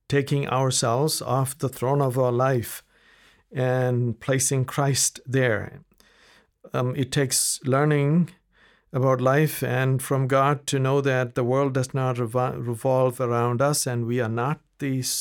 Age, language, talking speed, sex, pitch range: 60-79, English, 140 wpm, male, 125-145 Hz